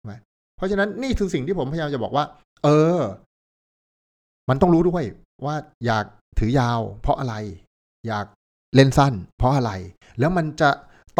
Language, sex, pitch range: Thai, male, 110-155 Hz